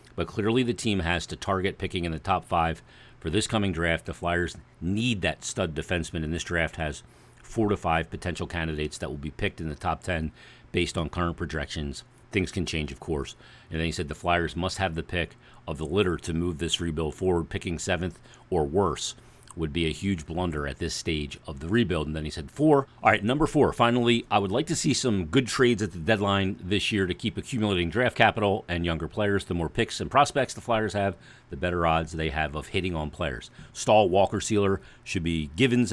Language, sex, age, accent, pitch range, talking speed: English, male, 40-59, American, 80-110 Hz, 225 wpm